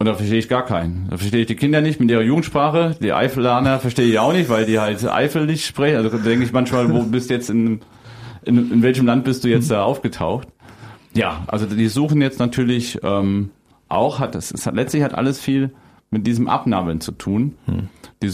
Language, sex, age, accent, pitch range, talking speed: German, male, 40-59, German, 110-135 Hz, 220 wpm